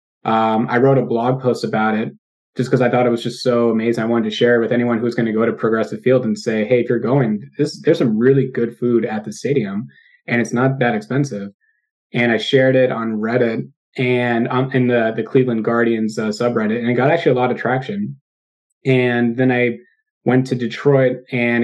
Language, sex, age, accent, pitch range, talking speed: English, male, 20-39, American, 115-130 Hz, 225 wpm